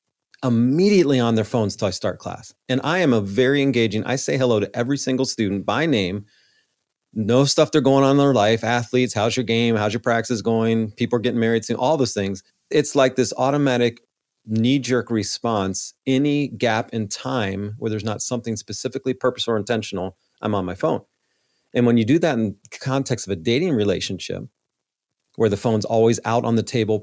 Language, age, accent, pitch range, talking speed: English, 40-59, American, 110-135 Hz, 200 wpm